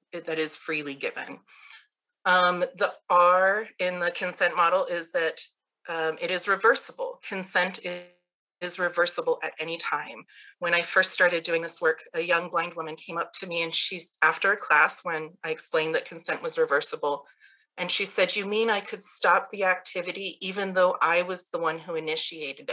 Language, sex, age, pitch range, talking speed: English, female, 30-49, 170-215 Hz, 180 wpm